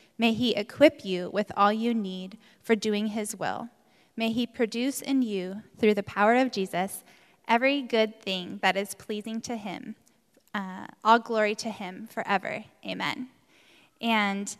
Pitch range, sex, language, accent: 210-255 Hz, female, English, American